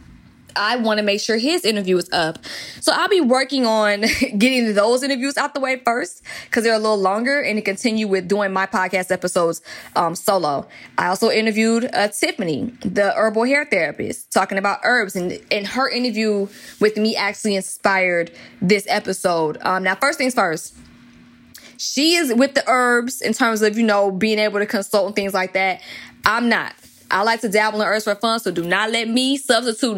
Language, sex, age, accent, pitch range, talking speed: English, female, 20-39, American, 190-235 Hz, 195 wpm